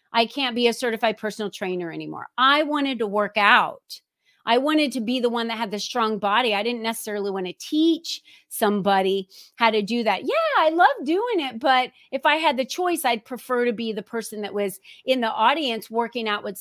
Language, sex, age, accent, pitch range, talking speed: English, female, 30-49, American, 215-275 Hz, 215 wpm